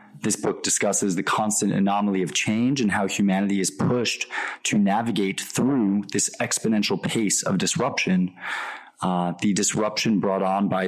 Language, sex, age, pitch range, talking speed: English, male, 20-39, 95-105 Hz, 150 wpm